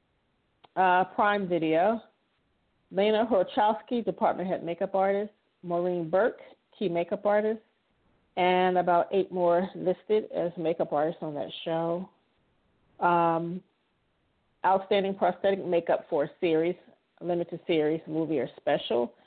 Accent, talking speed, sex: American, 115 wpm, female